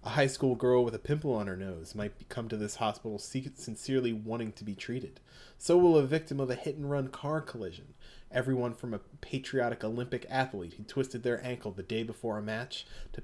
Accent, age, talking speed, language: American, 30-49, 205 wpm, English